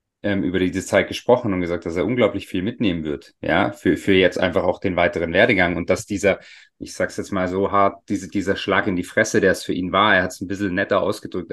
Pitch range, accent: 95-120 Hz, German